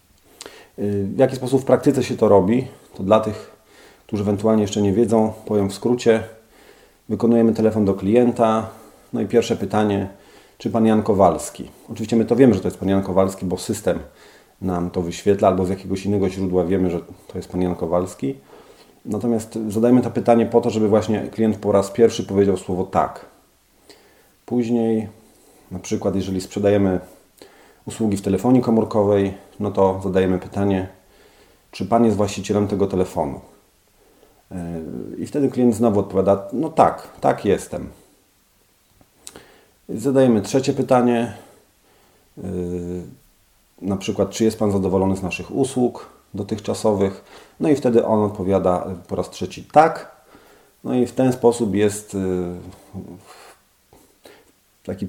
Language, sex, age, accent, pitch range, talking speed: Polish, male, 40-59, native, 95-115 Hz, 140 wpm